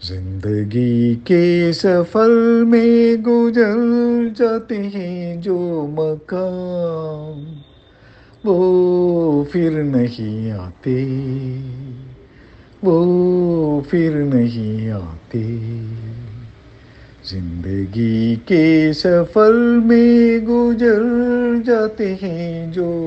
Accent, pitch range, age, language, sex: native, 130-175 Hz, 50-69, Tamil, male